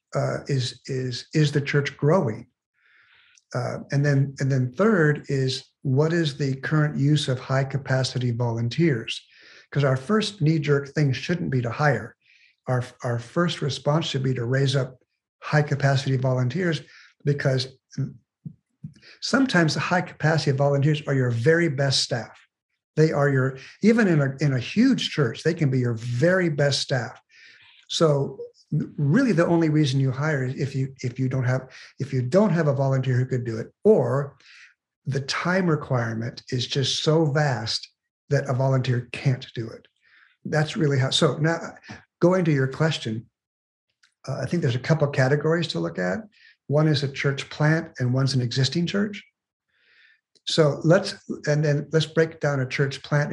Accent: American